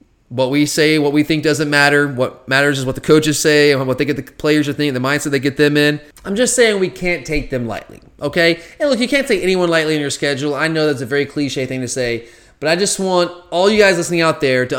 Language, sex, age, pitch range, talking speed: English, male, 20-39, 145-180 Hz, 275 wpm